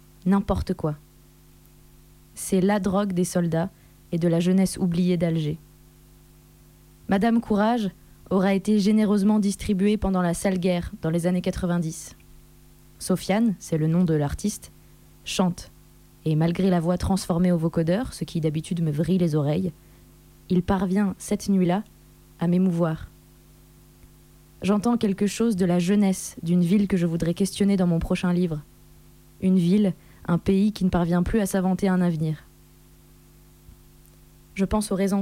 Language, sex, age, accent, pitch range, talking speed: French, female, 20-39, French, 170-195 Hz, 145 wpm